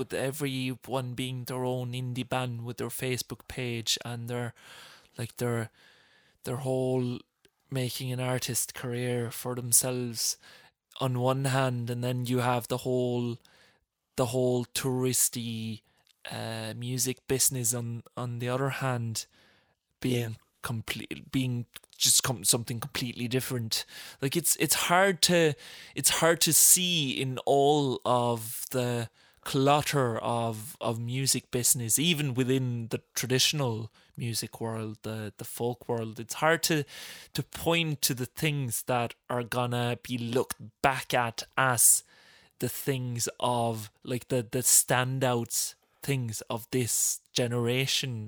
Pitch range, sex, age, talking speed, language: 120-130 Hz, male, 20-39, 130 wpm, English